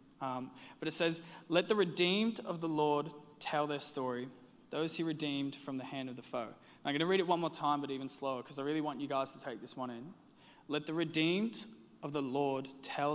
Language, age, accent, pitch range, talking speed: English, 20-39, Australian, 135-165 Hz, 235 wpm